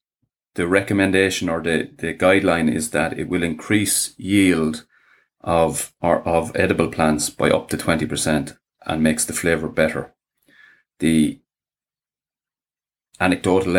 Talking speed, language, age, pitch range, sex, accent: 120 wpm, English, 30-49, 80-95 Hz, male, Irish